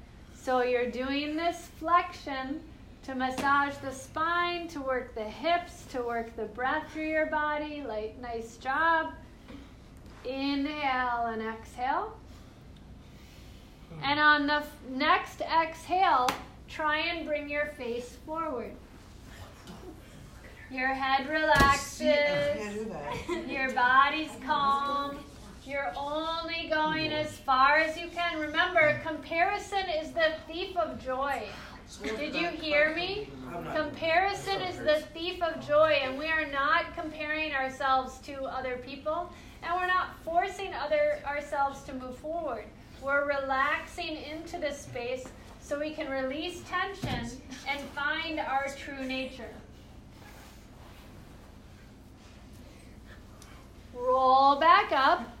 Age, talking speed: 40-59, 115 wpm